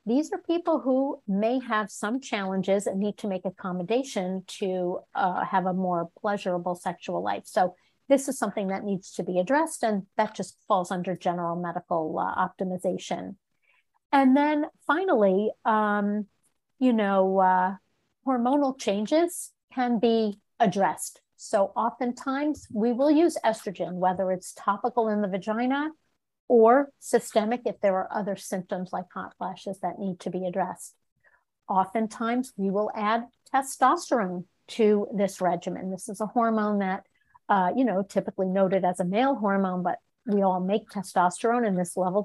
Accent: American